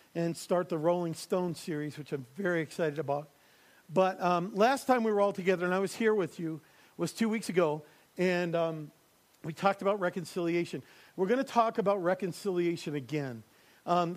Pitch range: 165-190 Hz